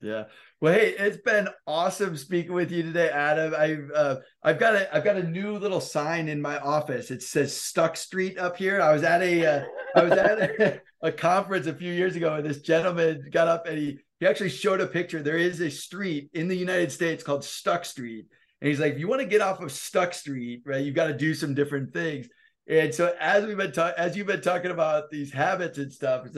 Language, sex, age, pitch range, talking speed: English, male, 30-49, 145-175 Hz, 240 wpm